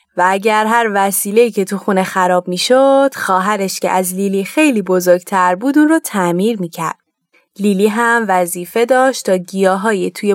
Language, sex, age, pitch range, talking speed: Persian, female, 20-39, 190-255 Hz, 160 wpm